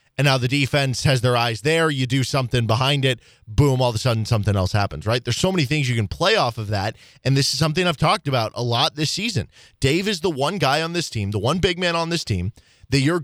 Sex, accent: male, American